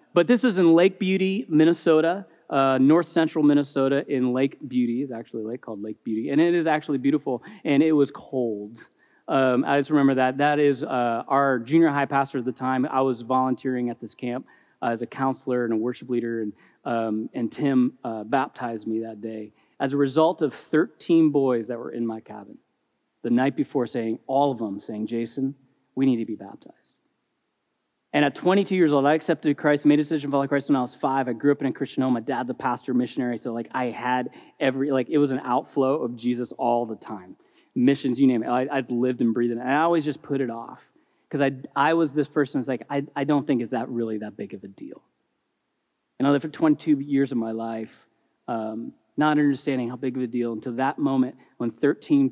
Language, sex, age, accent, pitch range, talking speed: English, male, 30-49, American, 120-145 Hz, 225 wpm